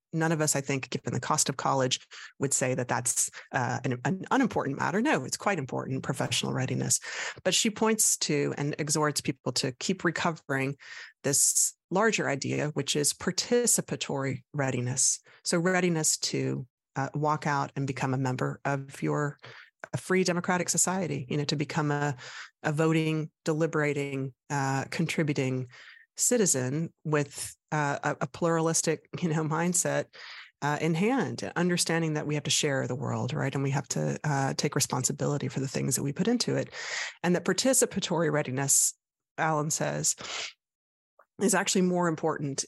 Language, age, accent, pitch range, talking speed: English, 30-49, American, 140-170 Hz, 155 wpm